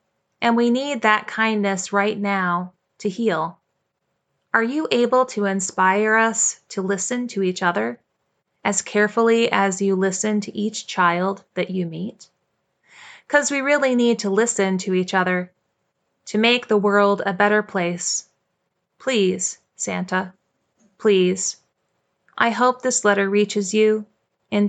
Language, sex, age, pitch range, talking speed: English, female, 30-49, 185-215 Hz, 140 wpm